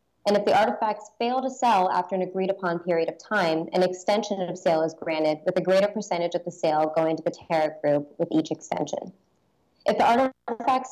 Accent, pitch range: American, 160-200 Hz